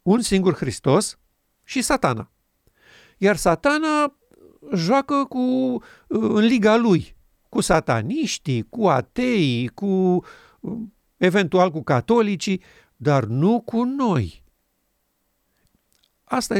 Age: 50-69